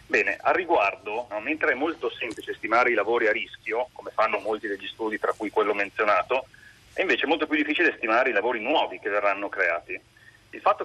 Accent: native